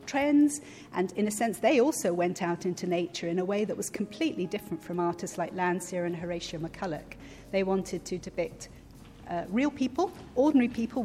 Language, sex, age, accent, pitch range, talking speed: English, female, 40-59, British, 180-230 Hz, 185 wpm